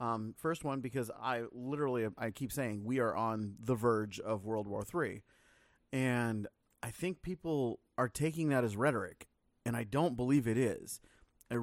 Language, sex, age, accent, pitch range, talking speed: English, male, 30-49, American, 115-145 Hz, 175 wpm